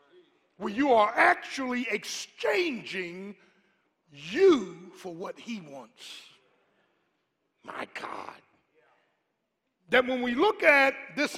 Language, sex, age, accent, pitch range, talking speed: English, male, 60-79, American, 205-260 Hz, 95 wpm